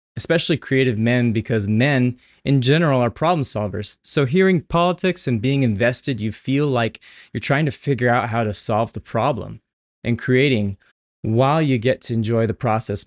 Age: 20-39